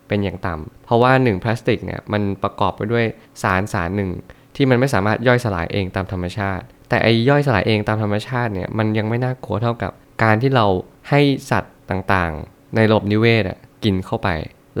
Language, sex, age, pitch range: Thai, male, 20-39, 100-120 Hz